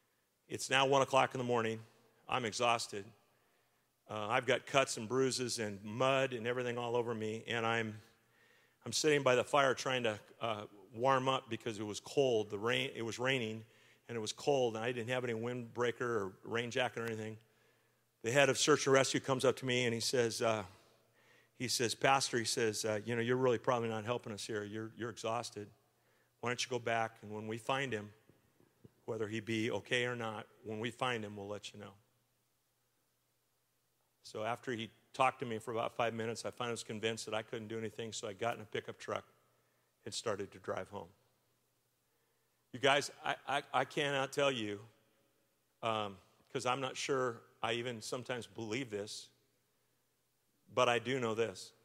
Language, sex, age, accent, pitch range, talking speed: English, male, 50-69, American, 110-125 Hz, 195 wpm